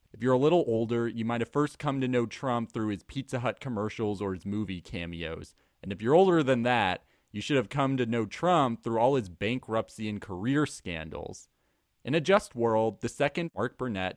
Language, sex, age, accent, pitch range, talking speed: English, male, 30-49, American, 100-125 Hz, 210 wpm